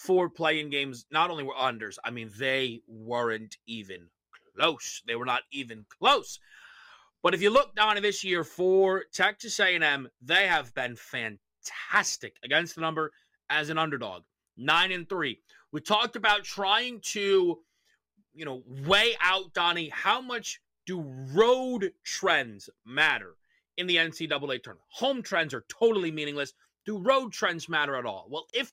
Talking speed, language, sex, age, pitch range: 150 wpm, English, male, 30-49, 155-205 Hz